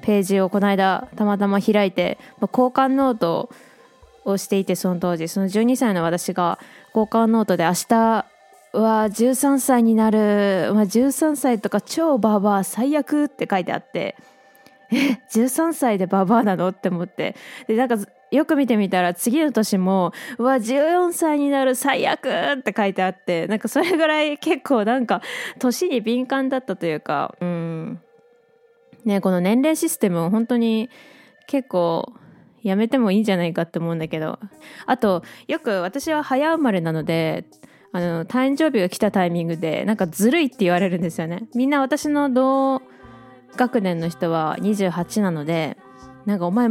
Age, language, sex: 20-39, Japanese, female